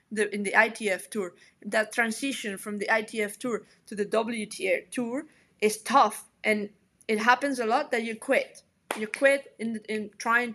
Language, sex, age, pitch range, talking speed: English, female, 20-39, 200-240 Hz, 170 wpm